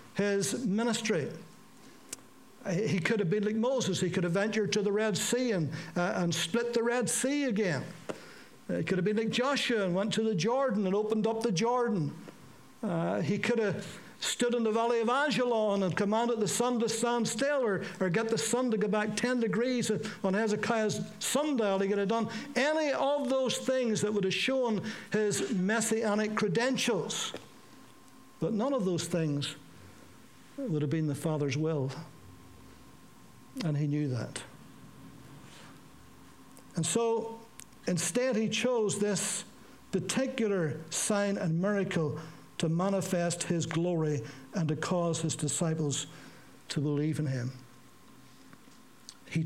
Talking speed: 150 wpm